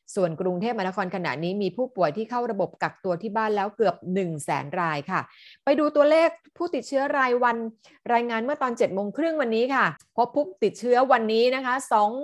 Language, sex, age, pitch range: Thai, female, 30-49, 185-235 Hz